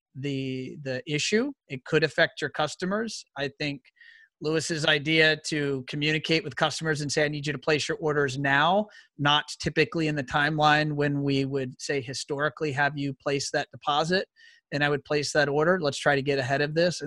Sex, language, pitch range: male, English, 140-160 Hz